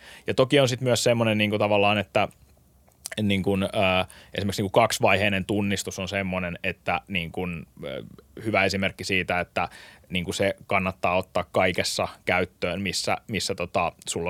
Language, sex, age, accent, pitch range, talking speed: Finnish, male, 20-39, native, 90-105 Hz, 145 wpm